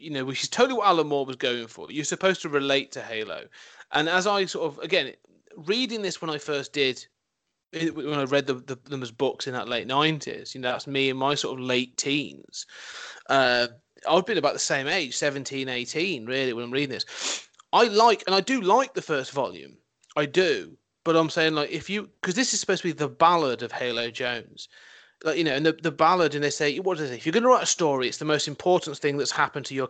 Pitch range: 135-180 Hz